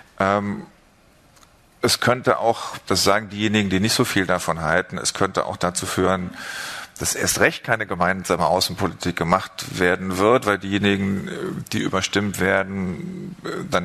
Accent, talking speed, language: German, 140 wpm, German